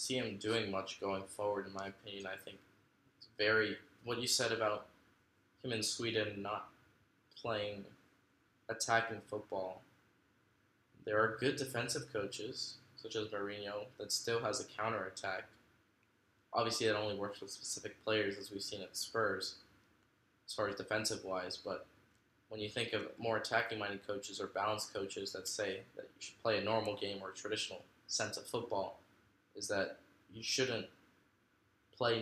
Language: English